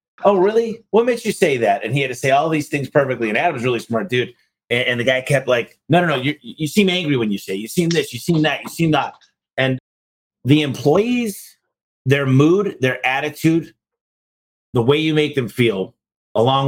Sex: male